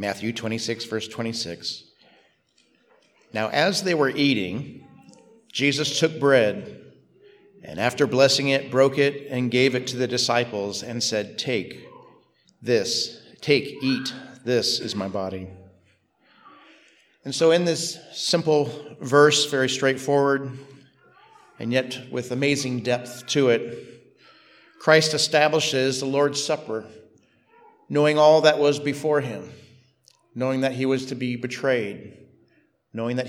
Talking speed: 125 wpm